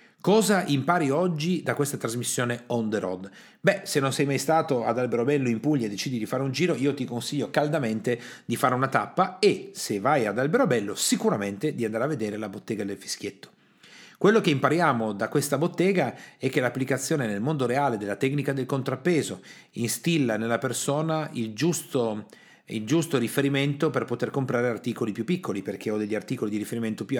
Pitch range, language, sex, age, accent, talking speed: 110-145 Hz, Italian, male, 40-59, native, 185 wpm